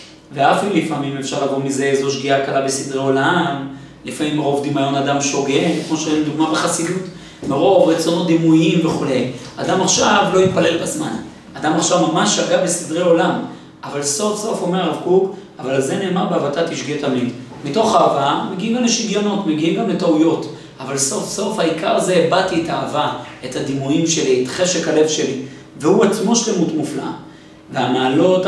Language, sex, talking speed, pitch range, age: Hebrew, male, 160 wpm, 135-175 Hz, 40-59